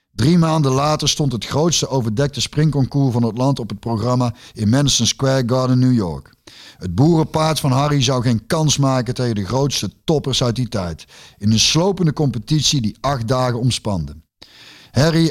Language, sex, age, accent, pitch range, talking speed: Dutch, male, 50-69, Dutch, 110-140 Hz, 175 wpm